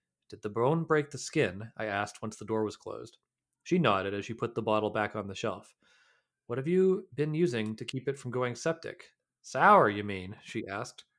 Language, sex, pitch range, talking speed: English, male, 110-145 Hz, 215 wpm